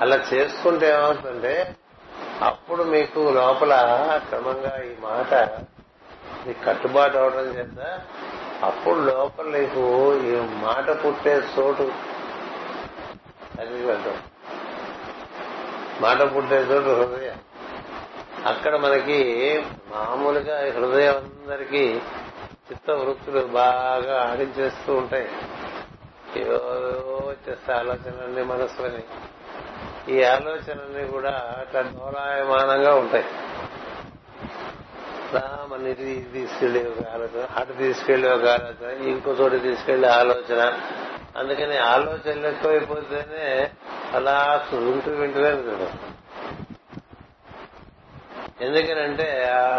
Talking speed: 75 wpm